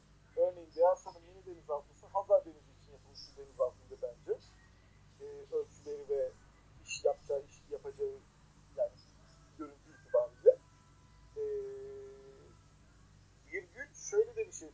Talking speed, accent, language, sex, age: 120 wpm, native, Turkish, male, 50-69